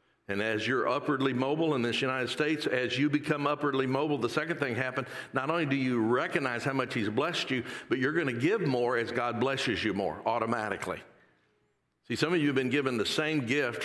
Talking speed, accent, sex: 215 wpm, American, male